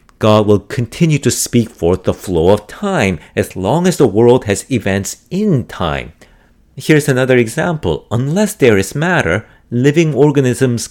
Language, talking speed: English, 155 wpm